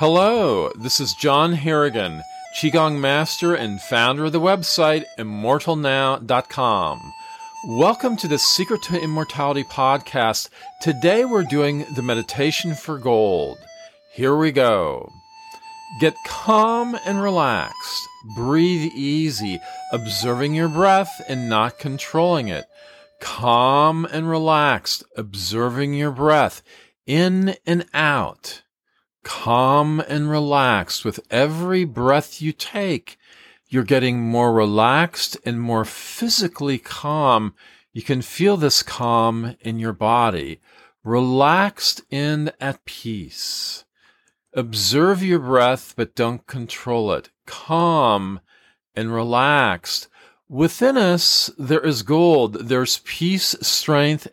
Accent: American